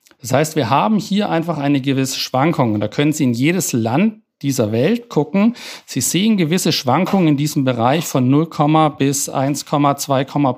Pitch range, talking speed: 125-160 Hz, 170 wpm